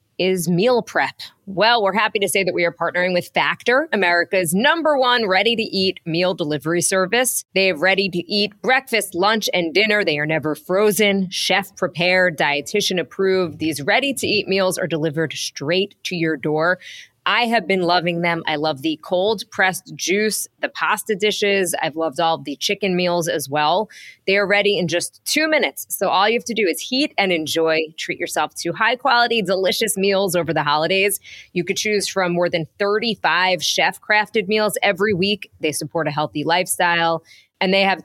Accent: American